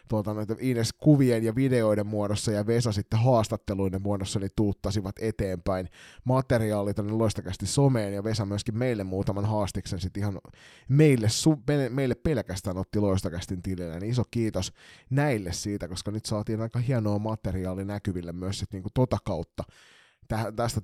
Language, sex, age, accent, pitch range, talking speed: Finnish, male, 30-49, native, 100-120 Hz, 145 wpm